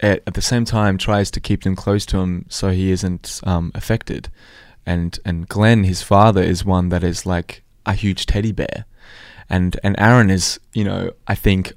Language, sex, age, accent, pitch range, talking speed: English, male, 20-39, Australian, 90-105 Hz, 195 wpm